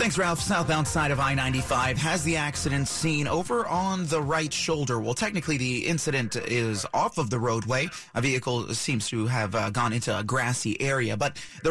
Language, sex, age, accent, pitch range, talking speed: English, male, 30-49, American, 120-155 Hz, 190 wpm